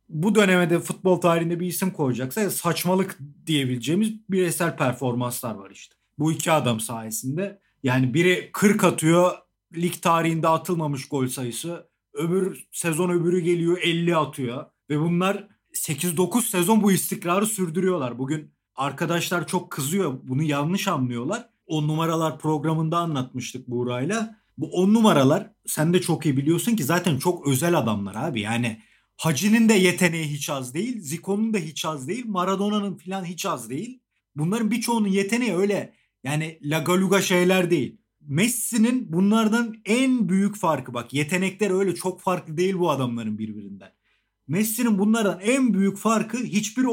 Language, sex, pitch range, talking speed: Turkish, male, 150-195 Hz, 140 wpm